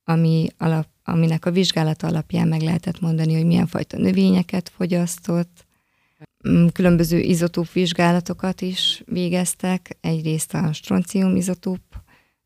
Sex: female